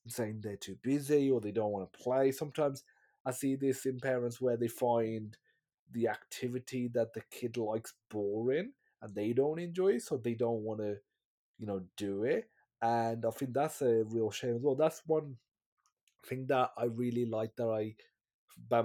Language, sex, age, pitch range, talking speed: English, male, 30-49, 110-135 Hz, 190 wpm